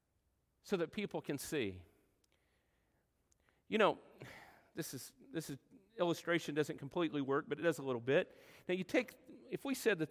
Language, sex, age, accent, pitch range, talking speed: English, male, 50-69, American, 155-215 Hz, 165 wpm